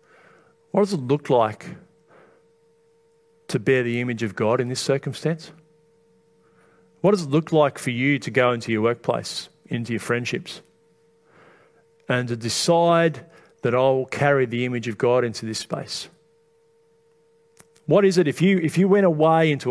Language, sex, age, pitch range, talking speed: English, male, 40-59, 125-160 Hz, 160 wpm